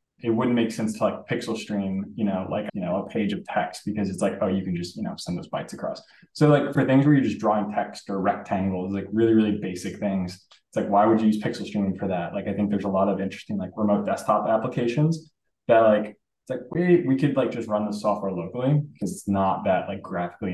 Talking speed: 255 wpm